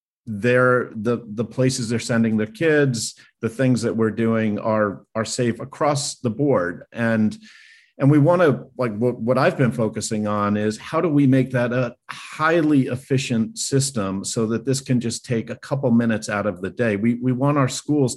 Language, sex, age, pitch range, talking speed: English, male, 50-69, 110-130 Hz, 195 wpm